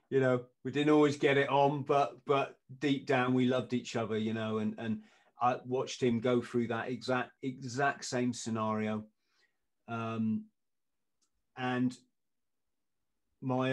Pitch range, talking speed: 115-135 Hz, 145 wpm